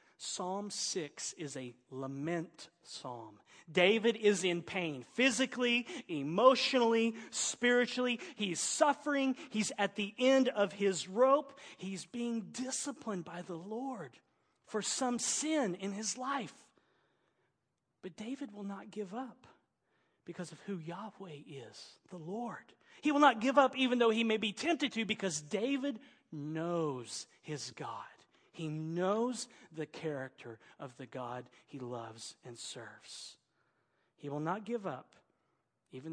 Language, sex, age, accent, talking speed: English, male, 40-59, American, 135 wpm